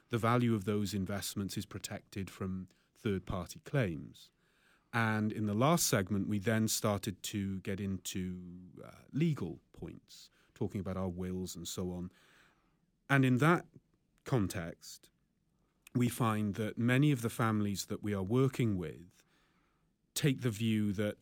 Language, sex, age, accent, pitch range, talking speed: English, male, 30-49, British, 100-125 Hz, 145 wpm